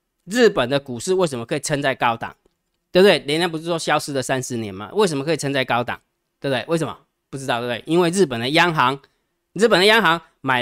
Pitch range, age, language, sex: 130-180 Hz, 20-39, Chinese, male